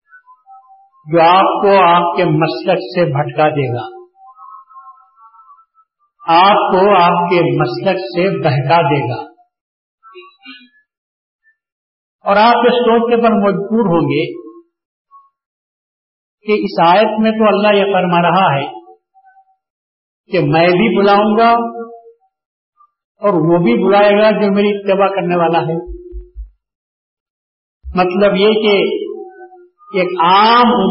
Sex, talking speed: male, 110 wpm